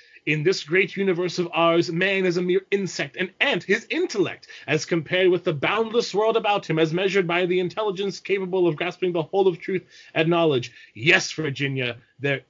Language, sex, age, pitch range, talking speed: English, male, 30-49, 150-185 Hz, 190 wpm